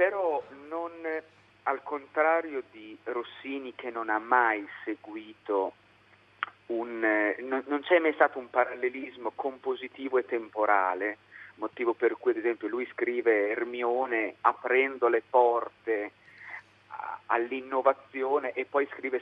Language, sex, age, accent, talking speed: Italian, male, 40-59, native, 115 wpm